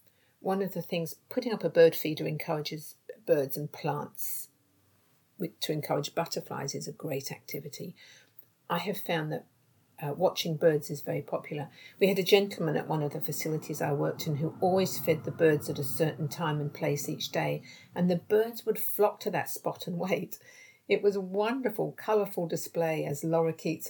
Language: English